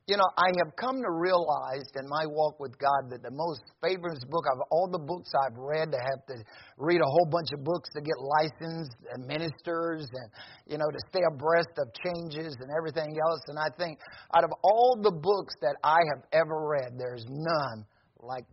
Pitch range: 140-175 Hz